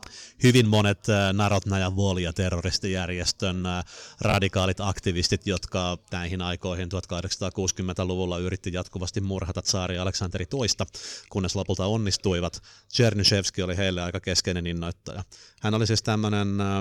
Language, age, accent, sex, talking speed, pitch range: Finnish, 30-49, native, male, 105 wpm, 90-100 Hz